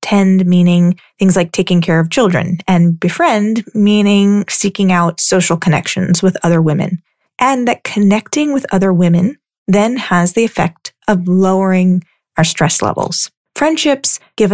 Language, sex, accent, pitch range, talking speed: English, female, American, 175-205 Hz, 145 wpm